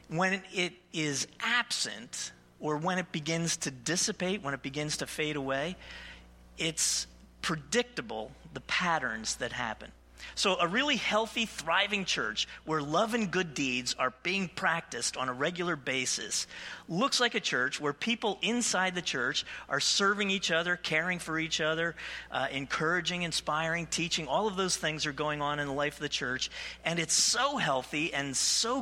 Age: 40-59